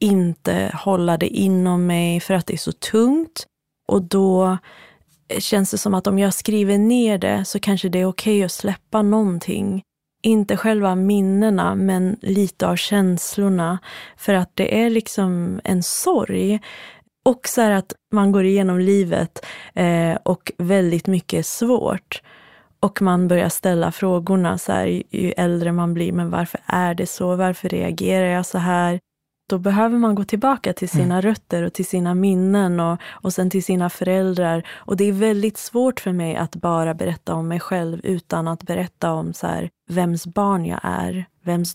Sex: female